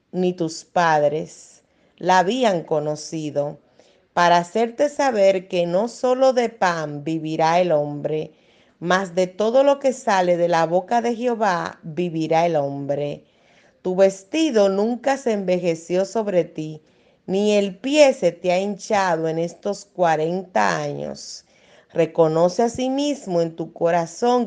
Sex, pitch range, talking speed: female, 160-225 Hz, 135 wpm